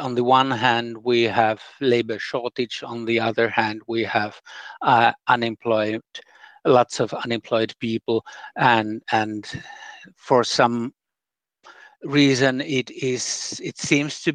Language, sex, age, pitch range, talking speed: Finnish, male, 60-79, 110-130 Hz, 125 wpm